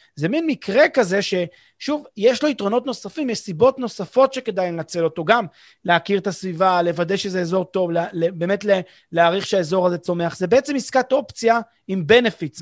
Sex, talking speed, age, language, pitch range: male, 160 wpm, 30-49, Hebrew, 160-205 Hz